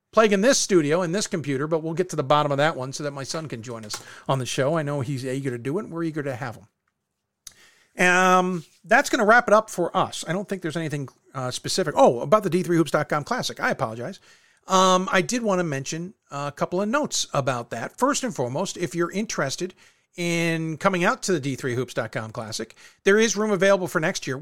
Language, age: English, 50-69